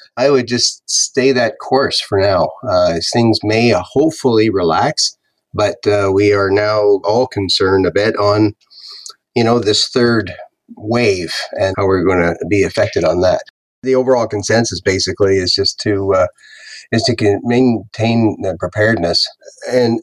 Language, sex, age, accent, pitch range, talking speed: English, male, 30-49, American, 100-120 Hz, 155 wpm